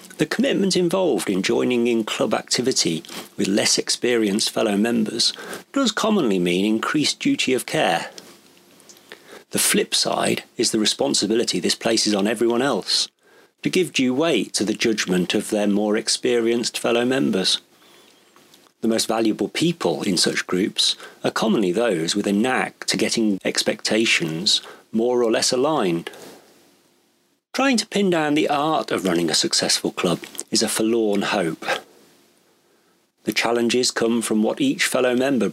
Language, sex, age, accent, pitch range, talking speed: English, male, 40-59, British, 105-130 Hz, 145 wpm